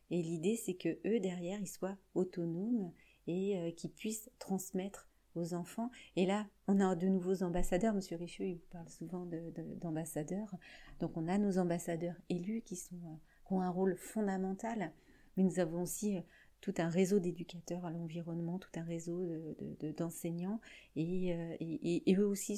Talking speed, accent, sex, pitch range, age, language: 185 wpm, French, female, 170-200 Hz, 40-59, French